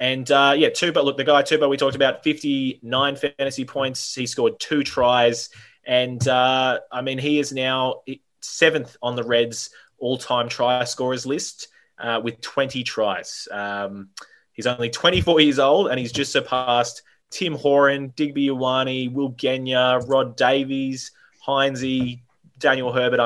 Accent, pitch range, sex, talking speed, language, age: Australian, 115-140 Hz, male, 150 wpm, English, 20-39